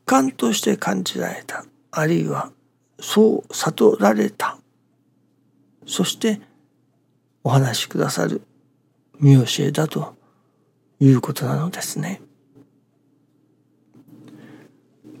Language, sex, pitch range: Japanese, male, 125-155 Hz